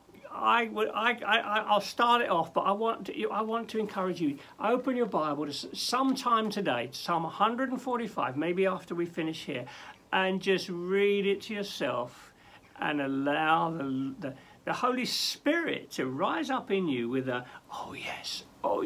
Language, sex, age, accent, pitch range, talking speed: English, male, 60-79, British, 140-205 Hz, 170 wpm